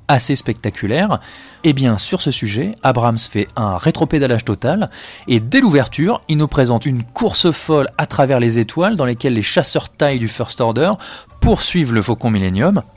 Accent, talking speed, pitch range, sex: French, 175 wpm, 105-140 Hz, male